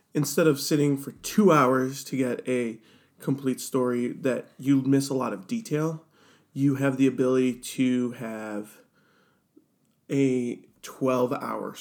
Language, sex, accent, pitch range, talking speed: English, male, American, 130-160 Hz, 135 wpm